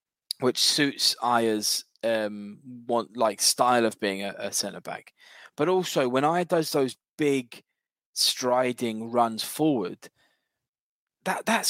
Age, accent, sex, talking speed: 10-29, British, male, 130 wpm